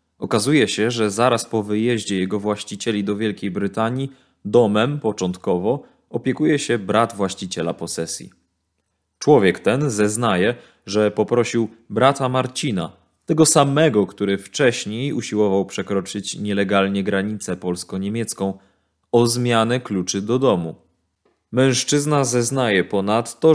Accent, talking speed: native, 105 wpm